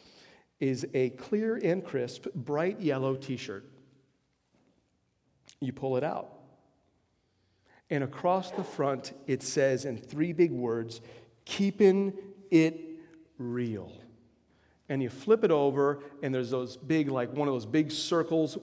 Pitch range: 130-170 Hz